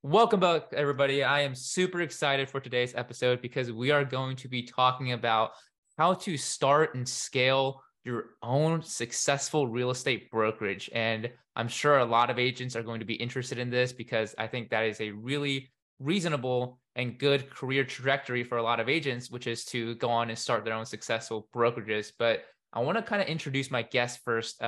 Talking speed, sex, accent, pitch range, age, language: 195 wpm, male, American, 120-145 Hz, 20-39, English